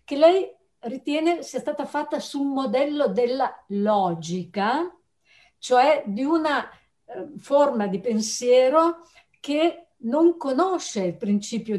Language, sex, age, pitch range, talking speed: Italian, female, 60-79, 210-320 Hz, 110 wpm